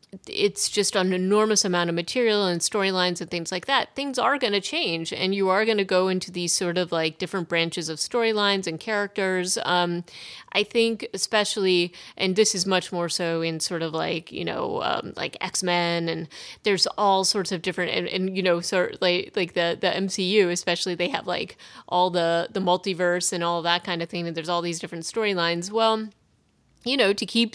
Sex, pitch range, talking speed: female, 175-210 Hz, 205 wpm